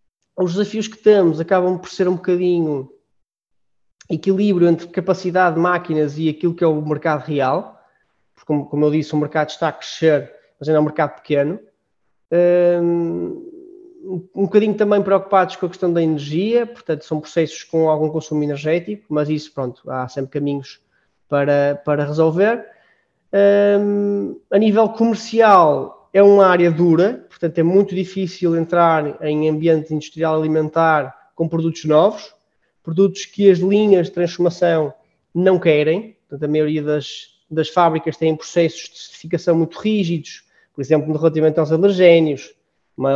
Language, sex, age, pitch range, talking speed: Portuguese, male, 20-39, 155-185 Hz, 150 wpm